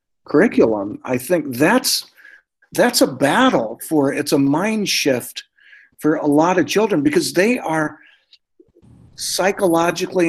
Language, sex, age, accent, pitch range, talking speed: English, male, 50-69, American, 130-170 Hz, 120 wpm